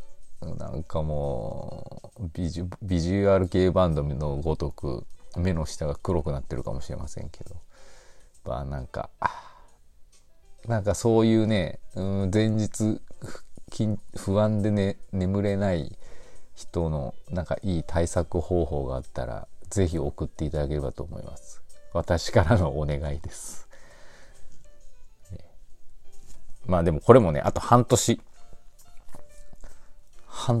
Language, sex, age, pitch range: Japanese, male, 40-59, 75-100 Hz